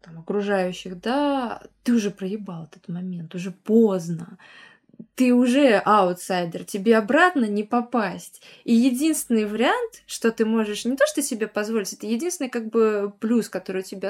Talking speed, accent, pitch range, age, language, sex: 160 wpm, native, 205-280 Hz, 20-39, Russian, female